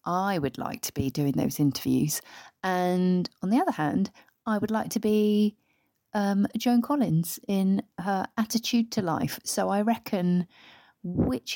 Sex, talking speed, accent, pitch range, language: female, 155 wpm, British, 165-220 Hz, English